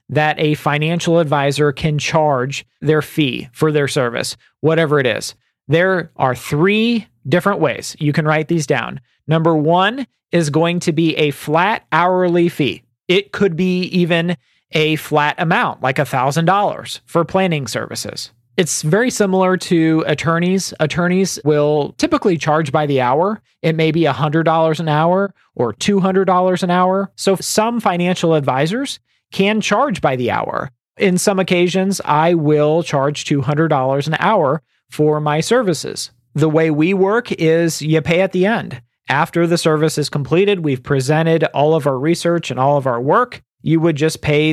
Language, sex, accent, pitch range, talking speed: English, male, American, 145-180 Hz, 160 wpm